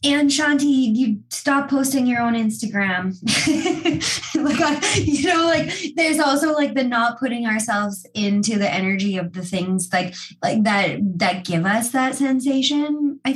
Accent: American